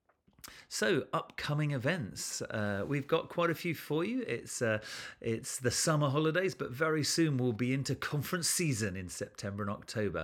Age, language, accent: 40-59, English, British